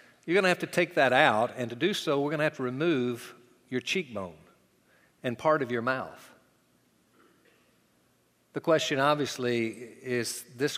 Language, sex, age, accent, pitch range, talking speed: English, male, 50-69, American, 115-145 Hz, 165 wpm